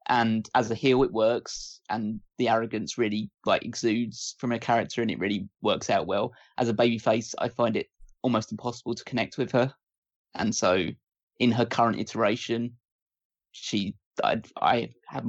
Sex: male